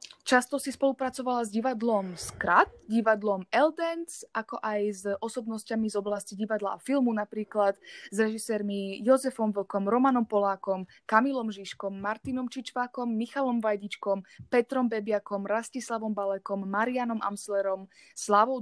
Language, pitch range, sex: Slovak, 205-250 Hz, female